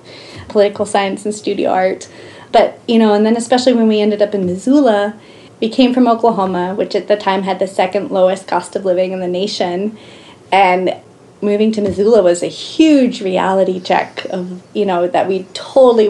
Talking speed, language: 185 wpm, English